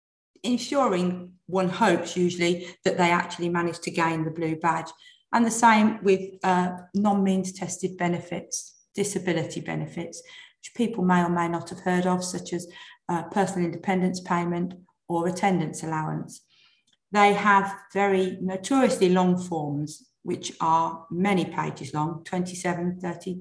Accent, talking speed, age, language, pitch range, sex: British, 140 wpm, 40-59, English, 170-195 Hz, female